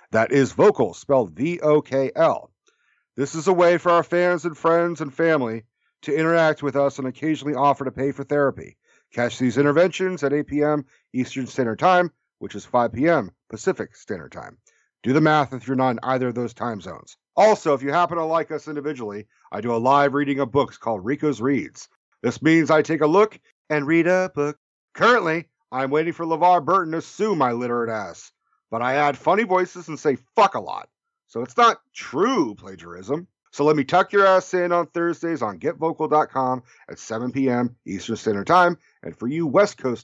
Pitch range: 130-165 Hz